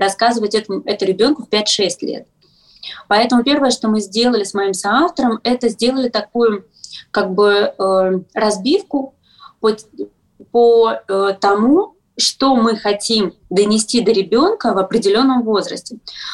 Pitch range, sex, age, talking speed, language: 195-240 Hz, female, 20-39, 130 wpm, Russian